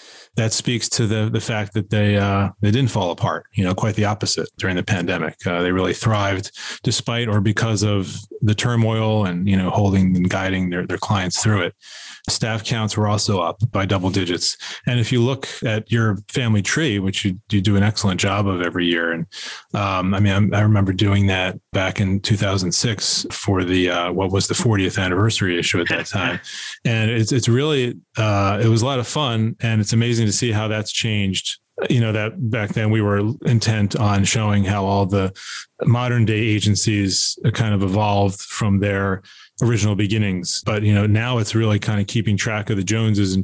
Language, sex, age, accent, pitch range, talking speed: English, male, 30-49, American, 95-110 Hz, 205 wpm